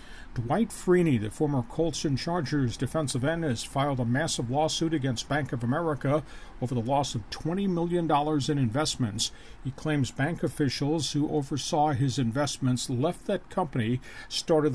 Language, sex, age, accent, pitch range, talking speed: English, male, 50-69, American, 125-155 Hz, 155 wpm